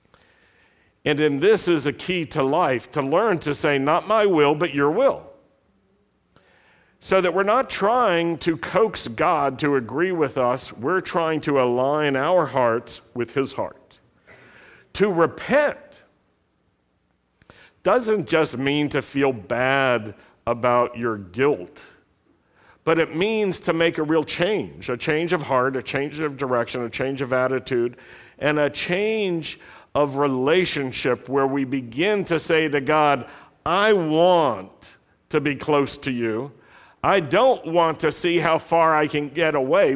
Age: 50-69